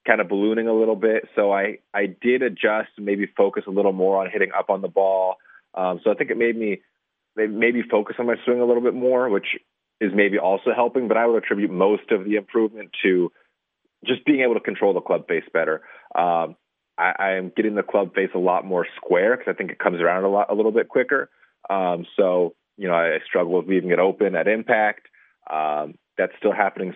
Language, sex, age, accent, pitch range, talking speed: English, male, 30-49, American, 95-110 Hz, 225 wpm